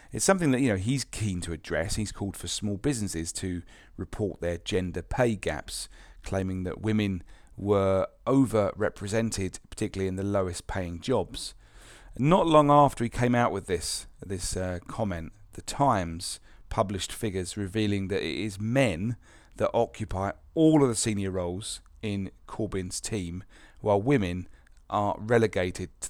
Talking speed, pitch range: 150 wpm, 95-115 Hz